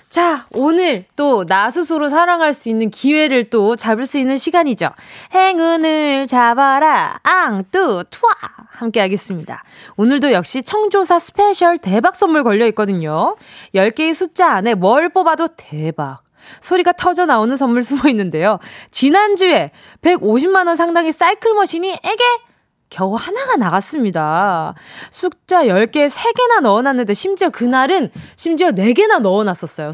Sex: female